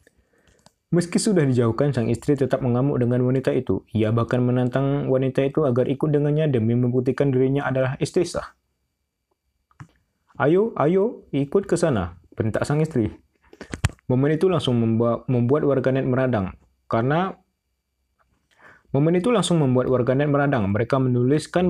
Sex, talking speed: male, 125 wpm